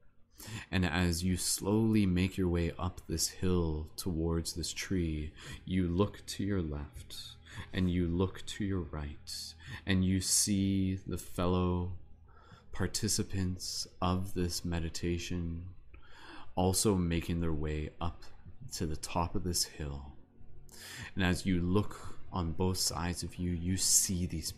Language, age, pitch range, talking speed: English, 30-49, 80-95 Hz, 135 wpm